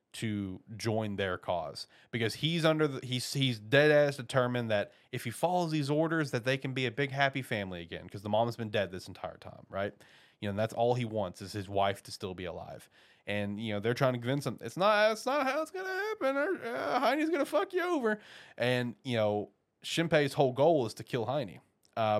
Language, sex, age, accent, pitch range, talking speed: English, male, 30-49, American, 105-140 Hz, 235 wpm